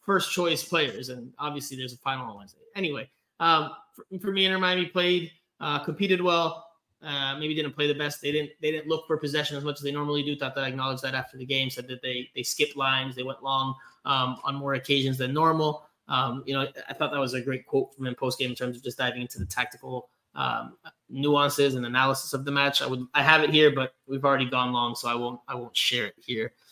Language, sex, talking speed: English, male, 245 wpm